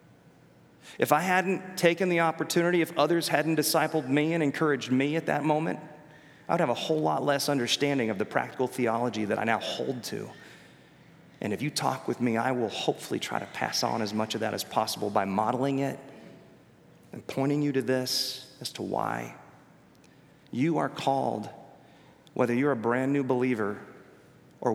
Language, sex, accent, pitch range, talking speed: English, male, American, 115-150 Hz, 180 wpm